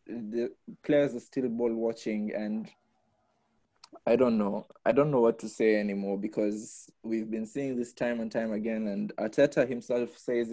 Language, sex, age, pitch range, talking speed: English, male, 20-39, 105-120 Hz, 170 wpm